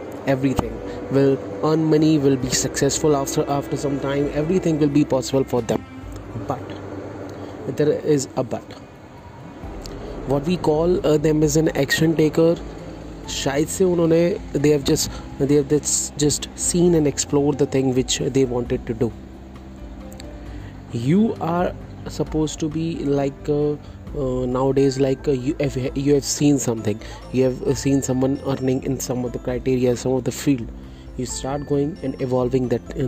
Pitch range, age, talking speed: 115-145 Hz, 30-49, 160 wpm